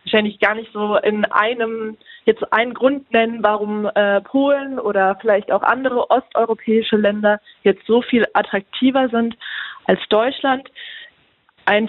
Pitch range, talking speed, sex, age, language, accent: 205-240 Hz, 135 wpm, female, 20-39, German, German